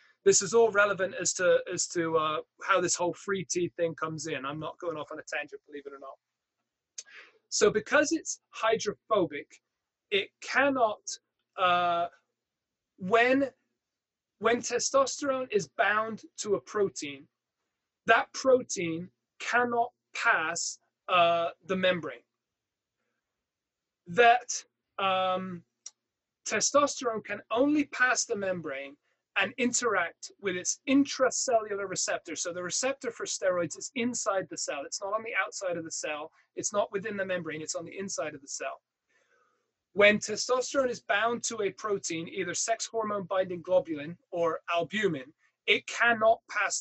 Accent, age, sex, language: British, 20-39, male, English